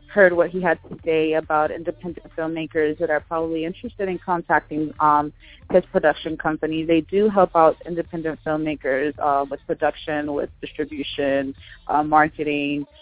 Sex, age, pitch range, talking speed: female, 20-39, 145-170 Hz, 150 wpm